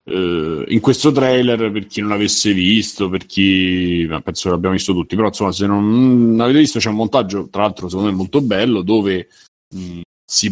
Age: 30-49